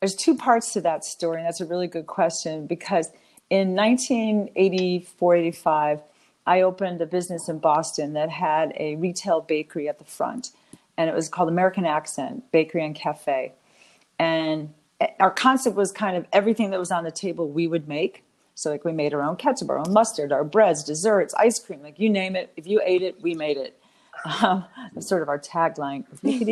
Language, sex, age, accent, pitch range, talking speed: English, female, 40-59, American, 165-220 Hz, 200 wpm